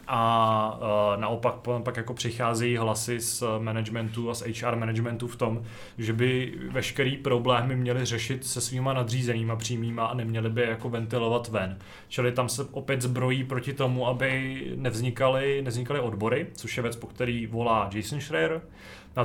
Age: 20-39